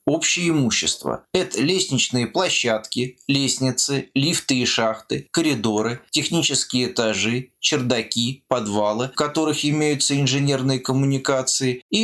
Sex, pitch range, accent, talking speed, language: male, 120-155 Hz, native, 105 wpm, Russian